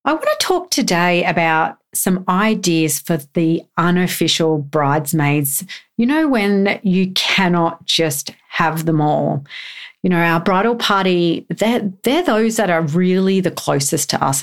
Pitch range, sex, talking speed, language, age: 165-205 Hz, female, 150 wpm, English, 40-59